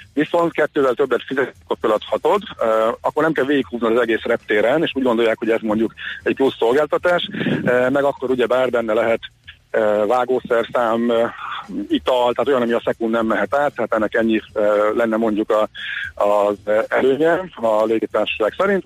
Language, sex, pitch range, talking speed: Hungarian, male, 115-150 Hz, 160 wpm